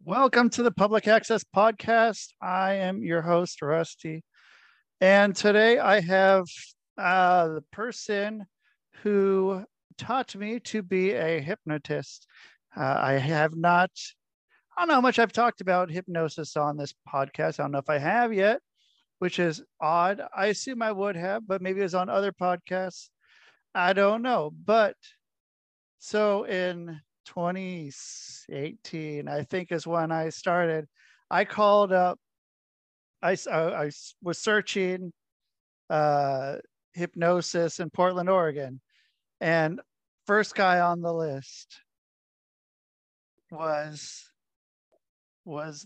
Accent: American